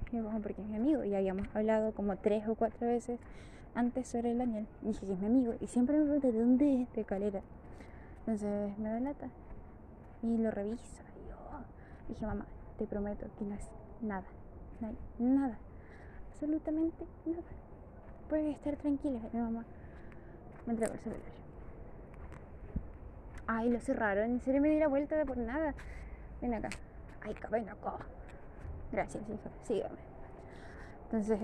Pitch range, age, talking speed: 215-250 Hz, 10-29, 160 wpm